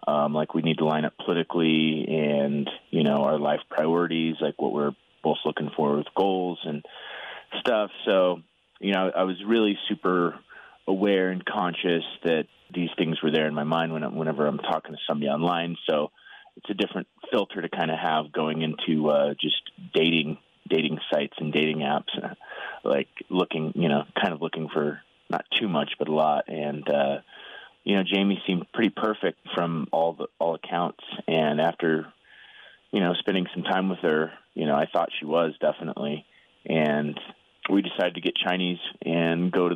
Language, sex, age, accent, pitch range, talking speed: English, male, 30-49, American, 80-90 Hz, 185 wpm